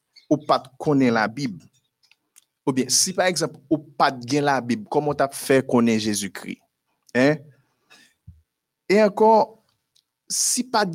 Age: 50-69